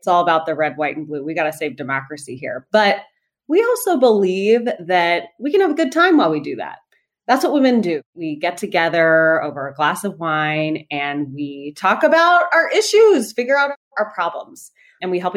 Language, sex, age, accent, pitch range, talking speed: English, female, 30-49, American, 155-235 Hz, 210 wpm